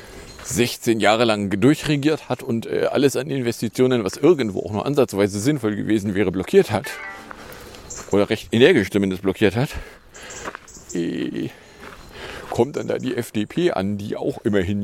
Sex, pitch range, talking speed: male, 95-125 Hz, 165 wpm